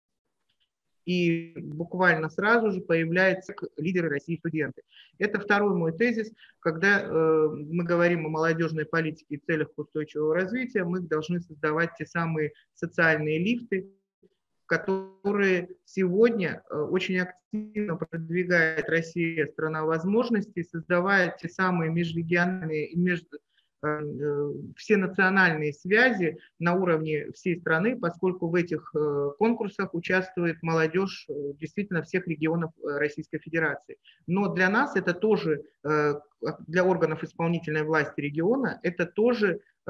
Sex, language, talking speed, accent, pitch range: male, Russian, 115 wpm, native, 160-190 Hz